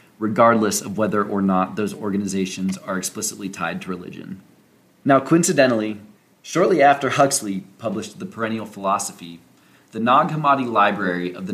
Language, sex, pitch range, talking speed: English, male, 95-130 Hz, 140 wpm